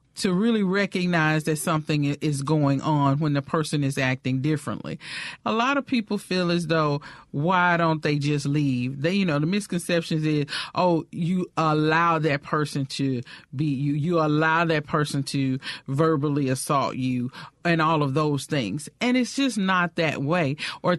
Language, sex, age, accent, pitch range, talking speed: English, male, 40-59, American, 145-180 Hz, 170 wpm